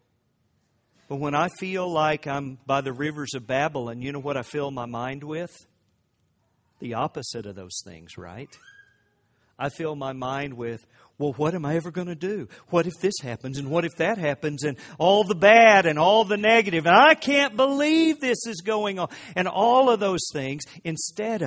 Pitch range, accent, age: 120-175 Hz, American, 50-69